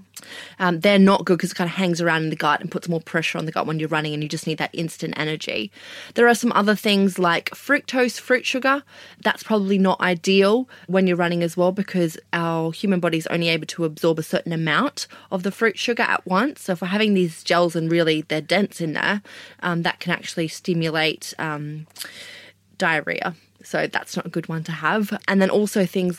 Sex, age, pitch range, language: female, 20-39, 160-190 Hz, English